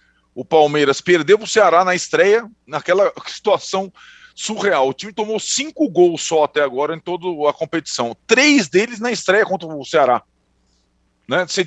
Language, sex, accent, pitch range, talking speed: Portuguese, male, Brazilian, 130-190 Hz, 160 wpm